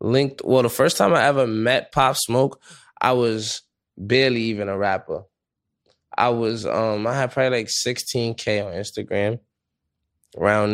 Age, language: 10-29, English